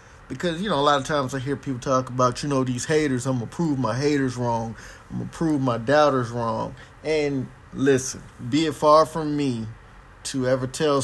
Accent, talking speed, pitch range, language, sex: American, 215 wpm, 120-145 Hz, English, male